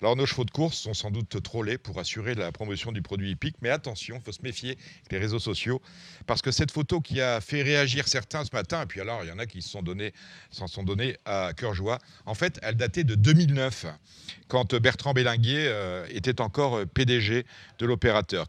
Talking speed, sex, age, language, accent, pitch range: 215 wpm, male, 40-59, French, French, 110-145 Hz